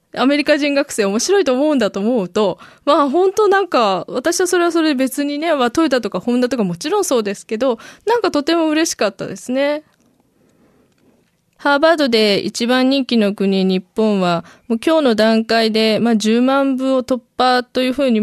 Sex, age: female, 20-39